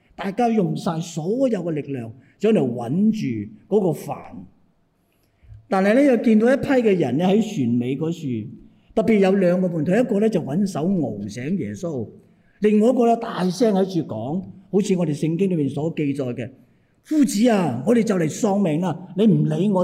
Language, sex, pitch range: Chinese, male, 145-215 Hz